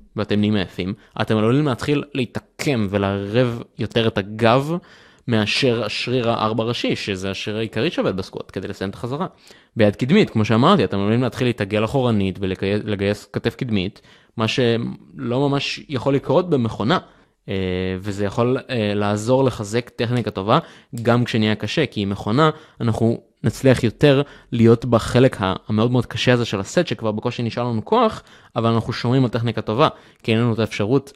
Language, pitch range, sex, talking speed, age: Hebrew, 105-125 Hz, male, 160 wpm, 20-39